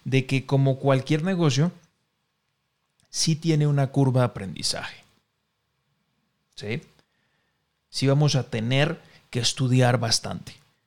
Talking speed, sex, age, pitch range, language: 105 wpm, male, 30-49, 120-140 Hz, Spanish